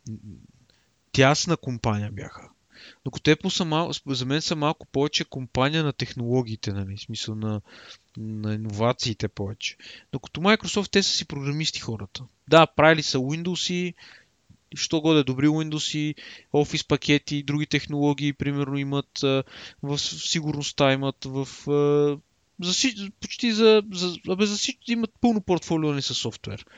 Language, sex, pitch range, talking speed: Bulgarian, male, 135-180 Hz, 130 wpm